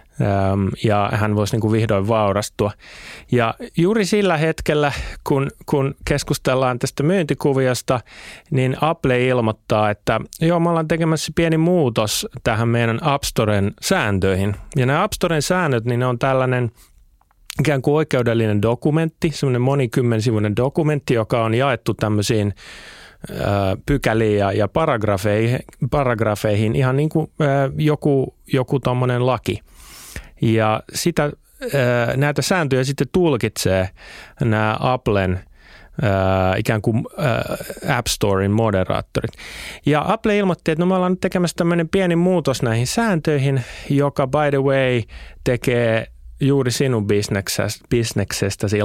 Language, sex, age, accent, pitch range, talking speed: Finnish, male, 30-49, native, 105-145 Hz, 115 wpm